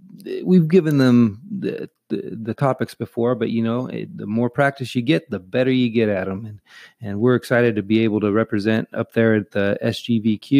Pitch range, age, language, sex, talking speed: 110-150 Hz, 30-49, English, male, 210 wpm